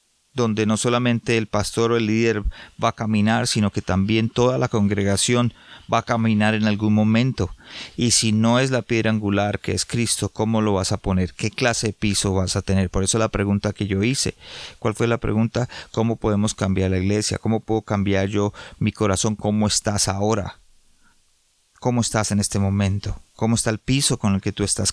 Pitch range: 95-110 Hz